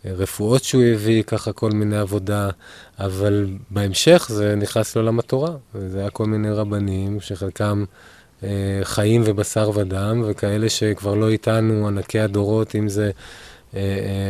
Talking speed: 145 wpm